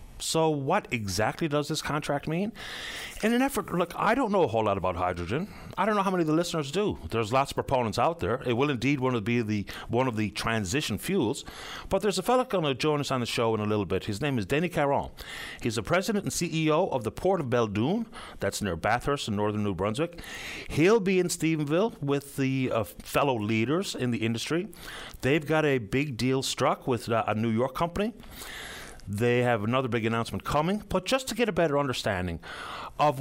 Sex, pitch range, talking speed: male, 115-165 Hz, 220 wpm